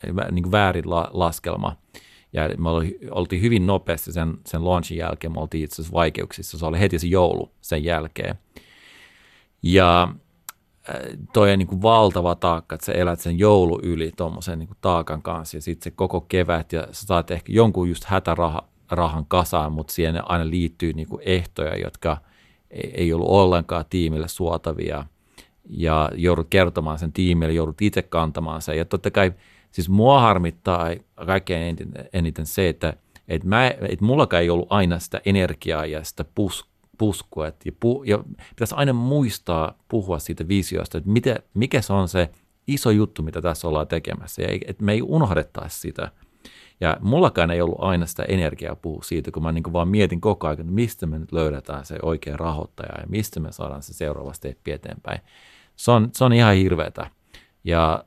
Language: Finnish